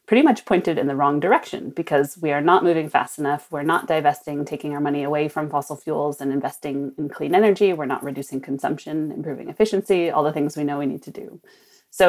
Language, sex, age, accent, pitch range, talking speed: English, female, 30-49, American, 150-195 Hz, 225 wpm